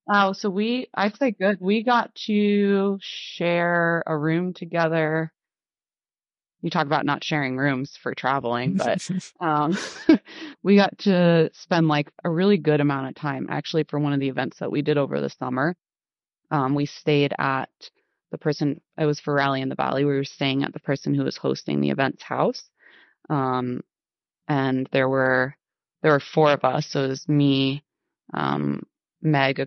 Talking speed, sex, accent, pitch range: 180 wpm, female, American, 135-165 Hz